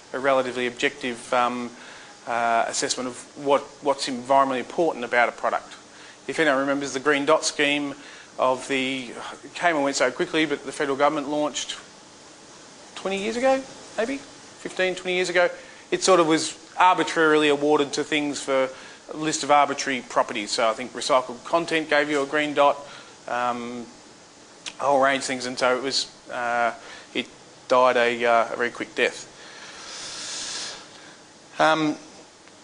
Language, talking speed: English, 160 wpm